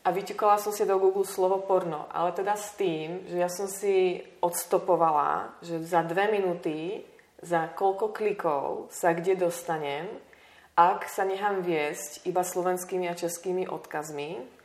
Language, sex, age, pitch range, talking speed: Czech, female, 30-49, 165-200 Hz, 150 wpm